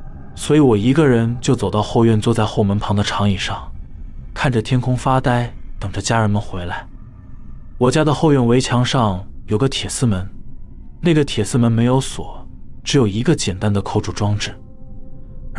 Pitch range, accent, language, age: 100-130 Hz, native, Chinese, 20-39